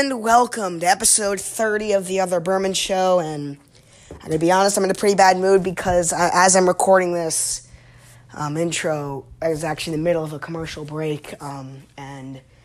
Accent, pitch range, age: American, 140-215 Hz, 20-39